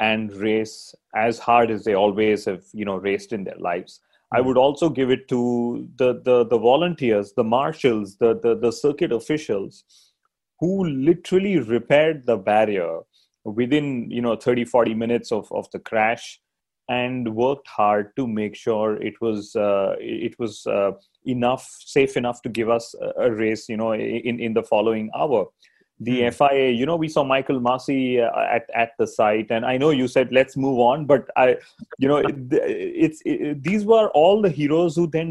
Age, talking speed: 30-49, 180 wpm